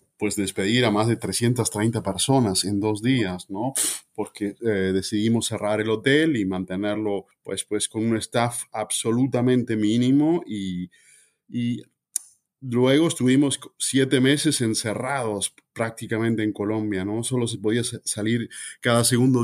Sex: male